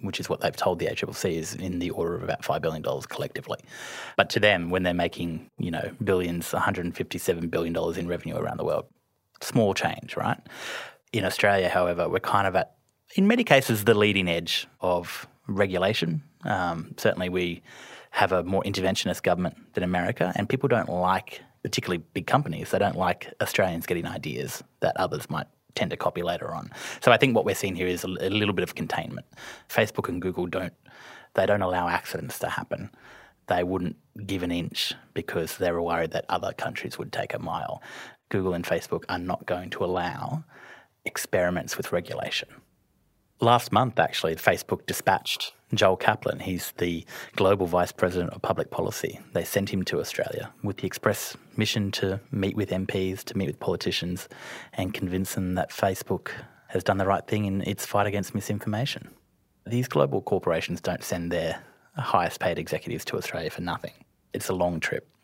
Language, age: English, 20-39